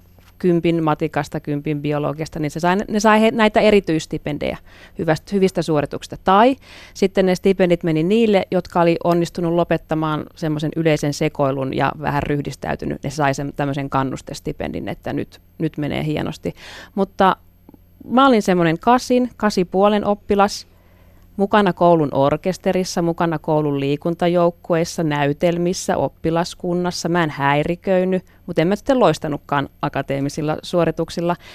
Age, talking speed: 30-49, 125 wpm